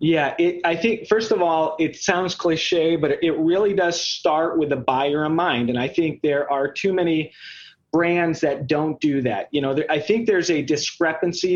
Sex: male